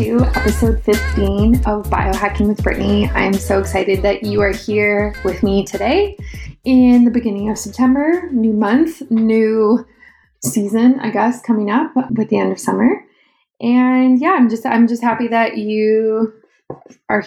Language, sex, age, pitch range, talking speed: English, female, 20-39, 195-230 Hz, 155 wpm